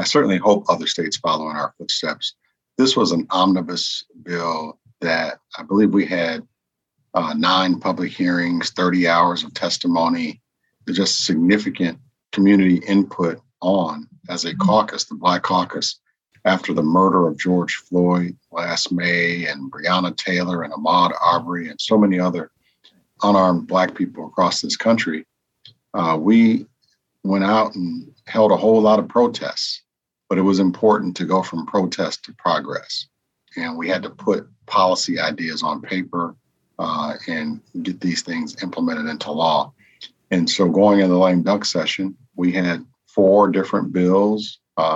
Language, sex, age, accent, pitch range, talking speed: English, male, 50-69, American, 90-105 Hz, 150 wpm